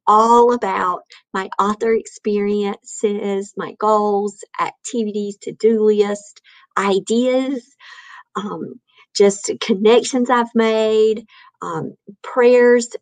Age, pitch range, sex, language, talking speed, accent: 50-69, 190-235 Hz, female, English, 90 wpm, American